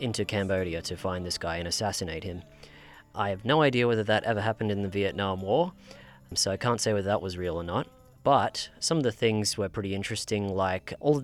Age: 20-39